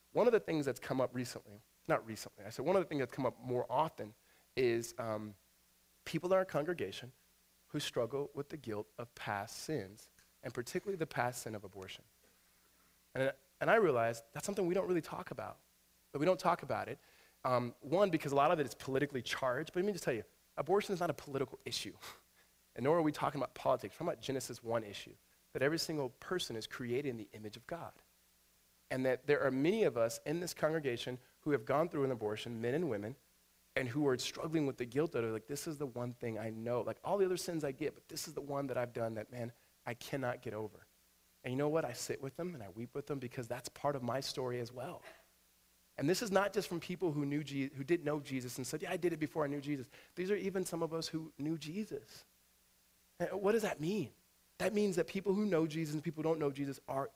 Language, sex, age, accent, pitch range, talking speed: English, male, 30-49, American, 115-160 Hz, 250 wpm